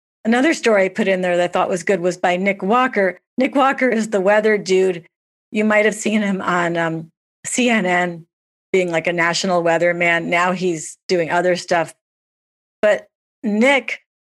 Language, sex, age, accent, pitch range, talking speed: English, female, 50-69, American, 175-215 Hz, 175 wpm